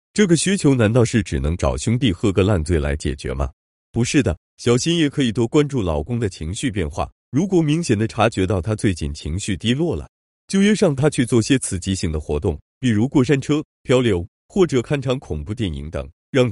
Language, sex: Chinese, male